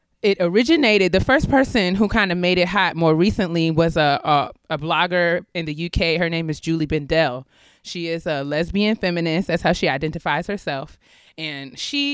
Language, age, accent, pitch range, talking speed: English, 20-39, American, 145-185 Hz, 190 wpm